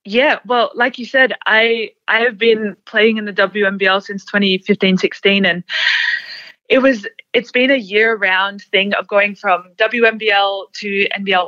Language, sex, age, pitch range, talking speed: English, female, 20-39, 185-230 Hz, 150 wpm